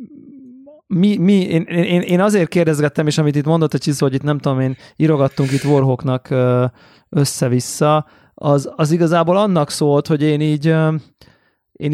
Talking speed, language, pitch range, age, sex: 155 wpm, Hungarian, 135-170 Hz, 30-49, male